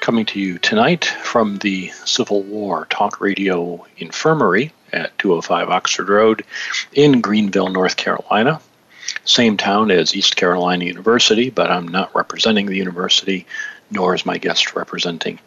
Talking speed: 140 wpm